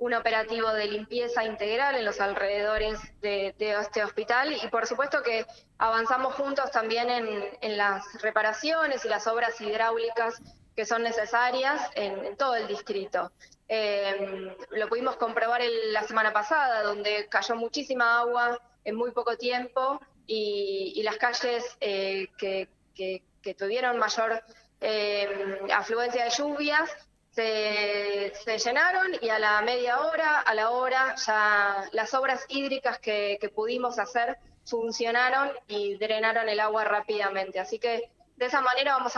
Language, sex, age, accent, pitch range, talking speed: Spanish, female, 20-39, Argentinian, 215-255 Hz, 145 wpm